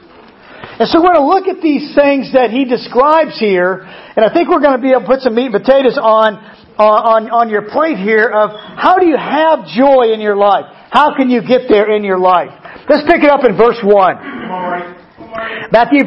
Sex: male